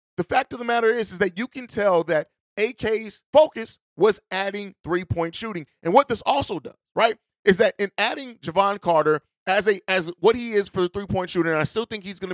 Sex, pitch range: male, 170-205 Hz